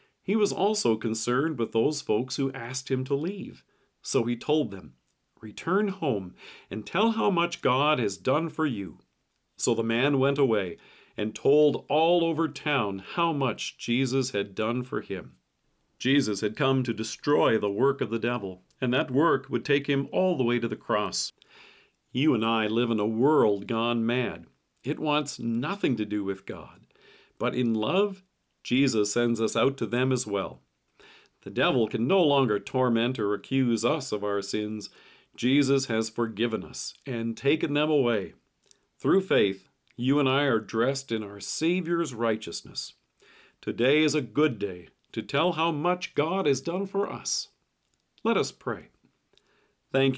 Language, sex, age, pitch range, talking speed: English, male, 40-59, 110-150 Hz, 170 wpm